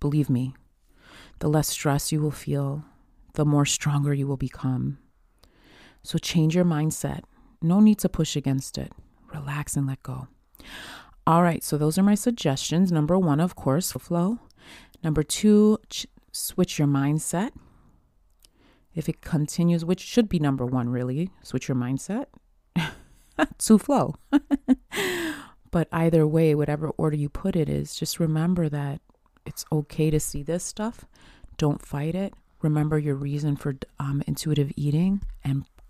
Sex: female